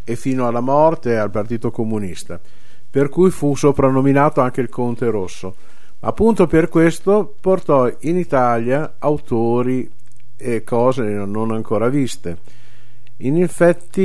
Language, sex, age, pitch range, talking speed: Italian, male, 50-69, 110-140 Hz, 125 wpm